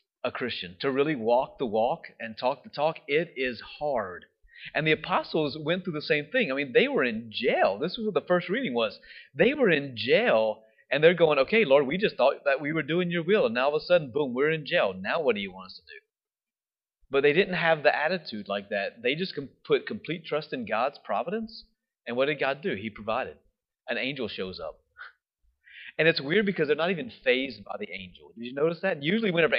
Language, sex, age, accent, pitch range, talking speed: English, male, 30-49, American, 140-200 Hz, 235 wpm